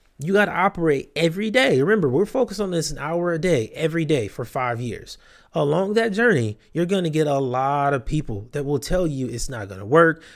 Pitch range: 135-180 Hz